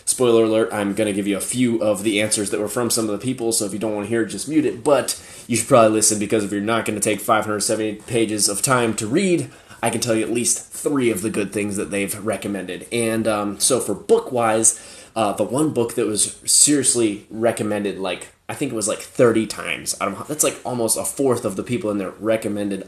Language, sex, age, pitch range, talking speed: English, male, 20-39, 100-115 Hz, 255 wpm